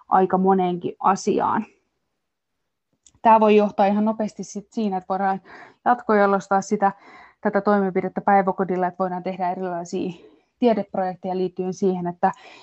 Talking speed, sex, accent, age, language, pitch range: 110 wpm, female, native, 20-39, Finnish, 185-215 Hz